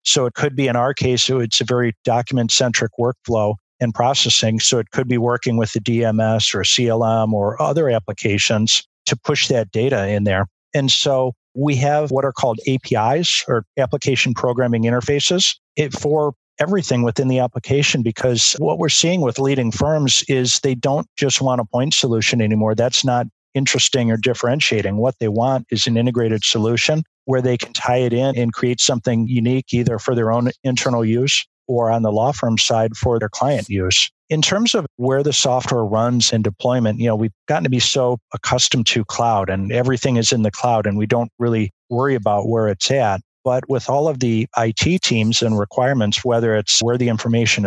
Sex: male